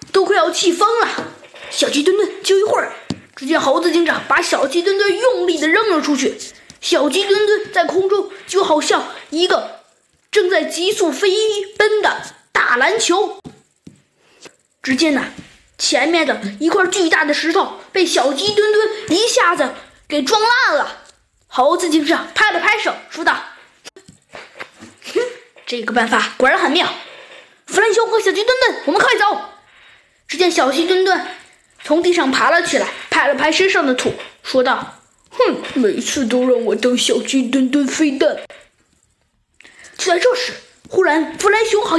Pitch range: 315-430 Hz